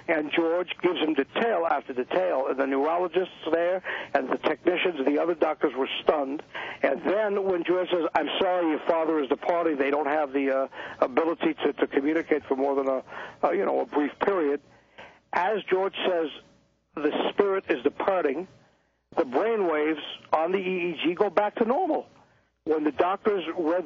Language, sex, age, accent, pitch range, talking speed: English, male, 60-79, American, 150-180 Hz, 180 wpm